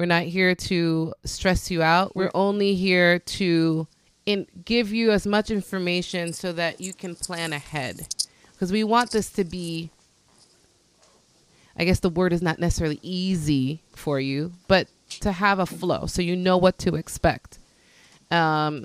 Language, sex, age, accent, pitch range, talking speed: English, female, 20-39, American, 160-190 Hz, 160 wpm